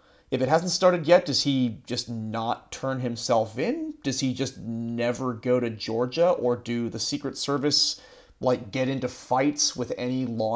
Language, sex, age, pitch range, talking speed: English, male, 30-49, 120-145 Hz, 175 wpm